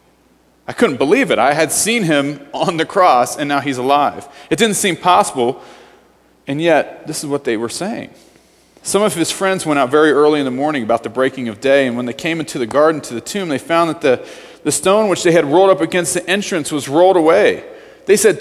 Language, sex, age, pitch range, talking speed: English, male, 40-59, 140-195 Hz, 235 wpm